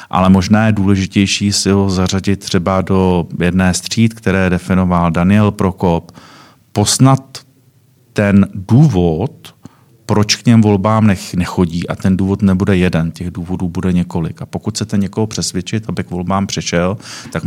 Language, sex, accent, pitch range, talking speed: Czech, male, native, 90-105 Hz, 145 wpm